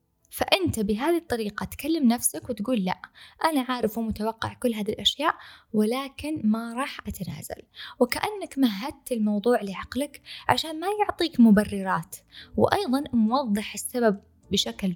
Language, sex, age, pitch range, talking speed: Arabic, female, 20-39, 205-265 Hz, 115 wpm